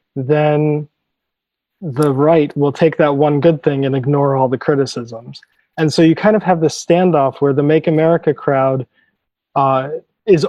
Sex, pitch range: male, 135-165 Hz